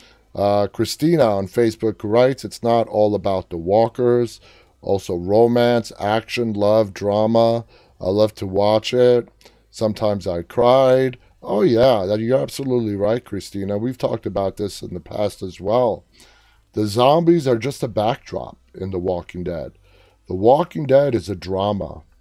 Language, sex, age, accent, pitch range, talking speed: English, male, 30-49, American, 100-125 Hz, 150 wpm